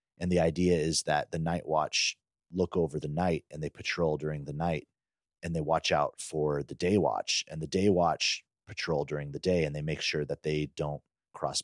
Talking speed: 215 wpm